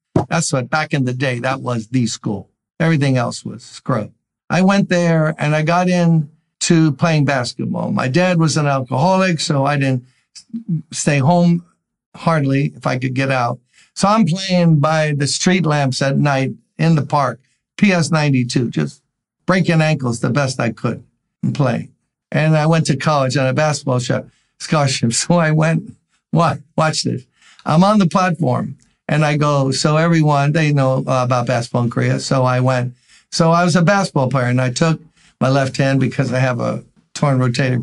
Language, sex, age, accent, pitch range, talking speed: English, male, 60-79, American, 130-170 Hz, 180 wpm